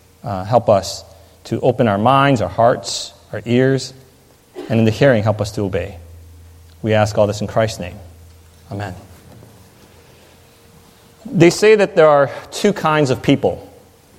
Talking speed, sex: 150 wpm, male